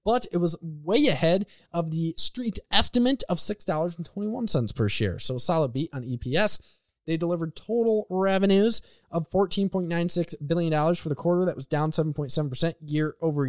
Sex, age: male, 20-39